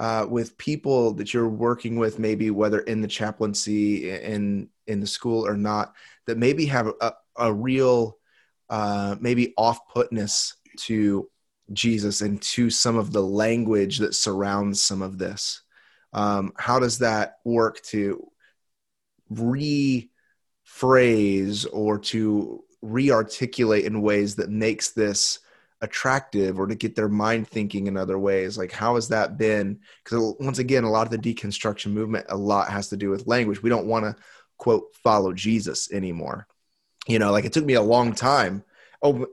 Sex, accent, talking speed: male, American, 160 wpm